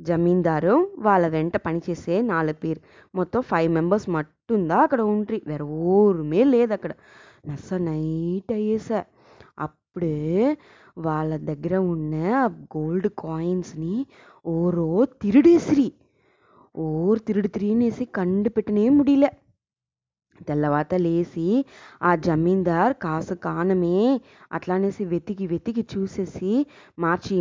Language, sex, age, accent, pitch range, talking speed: English, female, 20-39, Indian, 170-220 Hz, 90 wpm